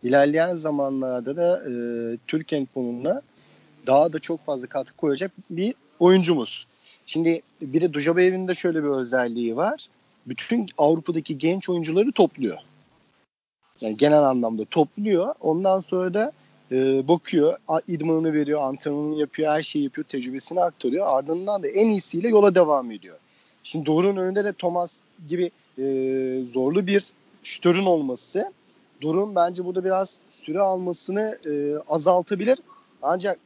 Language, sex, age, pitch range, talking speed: Turkish, male, 40-59, 155-195 Hz, 130 wpm